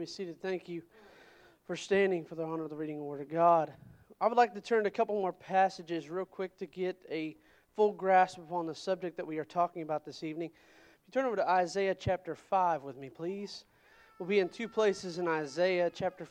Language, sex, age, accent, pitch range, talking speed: English, male, 40-59, American, 170-210 Hz, 230 wpm